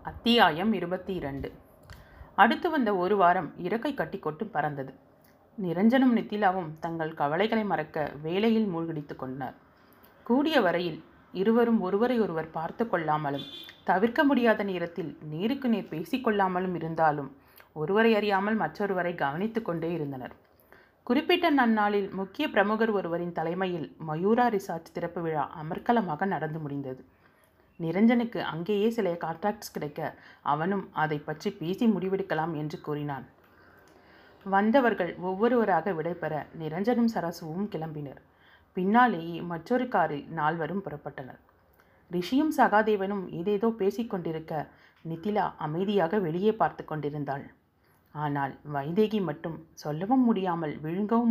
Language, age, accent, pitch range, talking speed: Tamil, 30-49, native, 155-215 Hz, 95 wpm